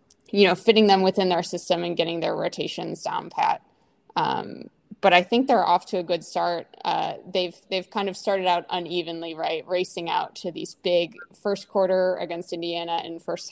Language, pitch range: English, 170-195 Hz